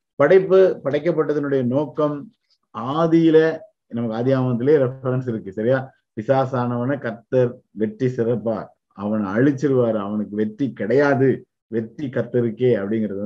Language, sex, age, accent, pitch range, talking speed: Tamil, male, 50-69, native, 110-150 Hz, 100 wpm